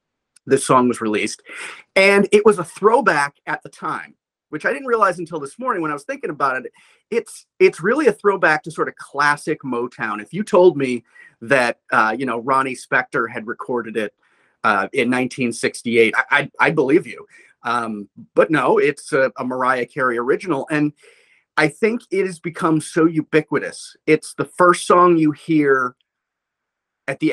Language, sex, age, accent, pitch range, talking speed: English, male, 30-49, American, 140-180 Hz, 180 wpm